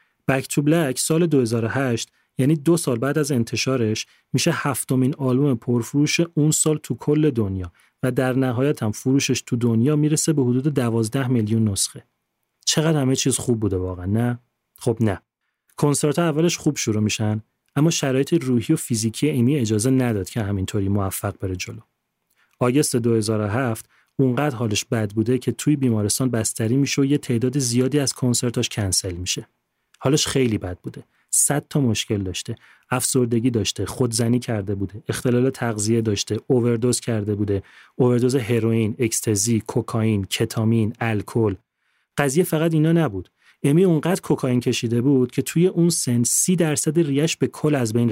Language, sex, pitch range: Persian, male, 110-145 Hz